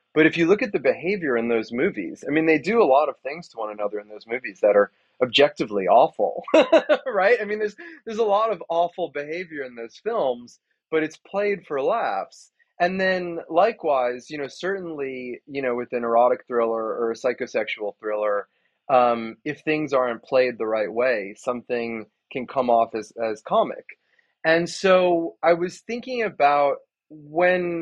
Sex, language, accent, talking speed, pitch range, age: male, English, American, 180 wpm, 120-175 Hz, 30-49